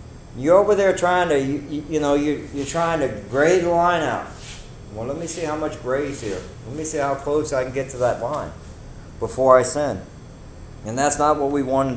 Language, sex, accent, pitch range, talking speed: English, male, American, 130-155 Hz, 225 wpm